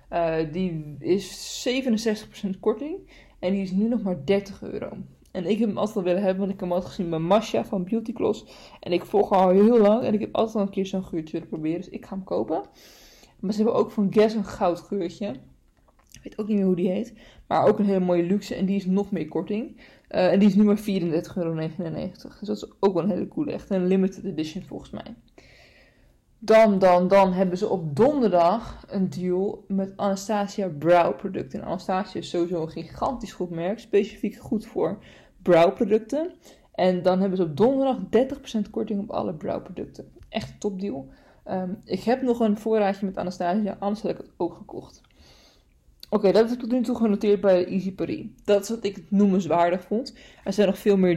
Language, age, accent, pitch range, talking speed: Dutch, 20-39, Dutch, 180-215 Hz, 215 wpm